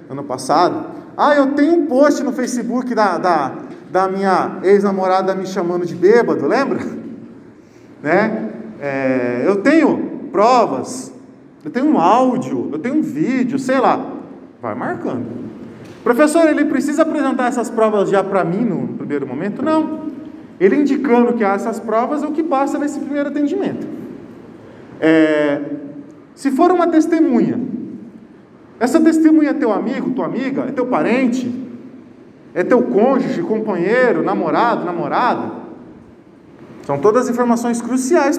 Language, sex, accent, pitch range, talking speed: Portuguese, male, Brazilian, 215-290 Hz, 130 wpm